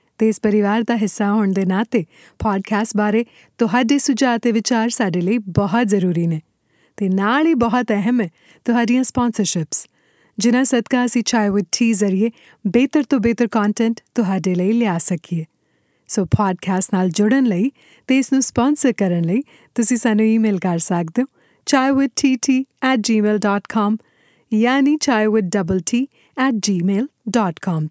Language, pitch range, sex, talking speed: Punjabi, 195-240 Hz, female, 125 wpm